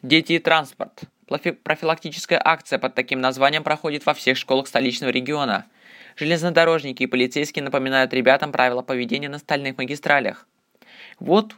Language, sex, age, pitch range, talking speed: Russian, male, 20-39, 130-155 Hz, 130 wpm